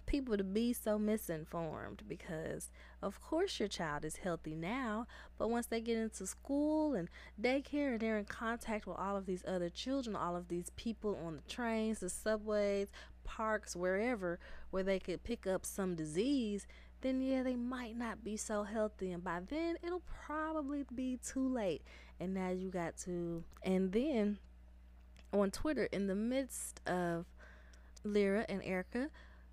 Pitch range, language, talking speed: 175-250 Hz, English, 165 wpm